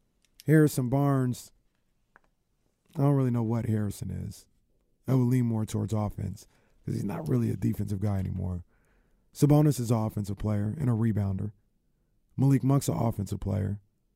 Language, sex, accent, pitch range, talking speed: English, male, American, 115-150 Hz, 155 wpm